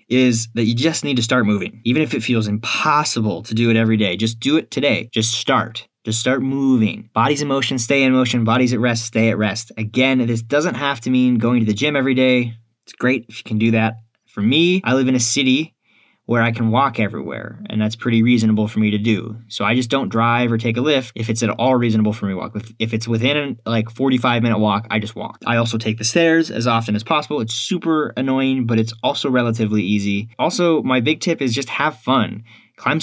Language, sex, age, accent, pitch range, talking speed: English, male, 20-39, American, 110-130 Hz, 240 wpm